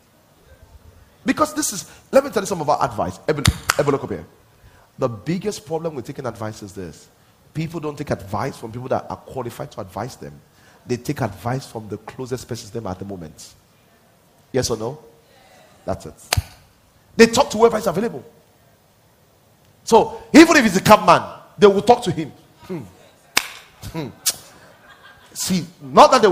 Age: 30-49